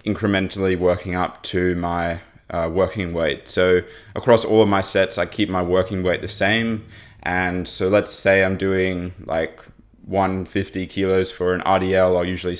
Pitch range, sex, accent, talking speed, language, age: 90-100 Hz, male, Australian, 165 wpm, English, 20-39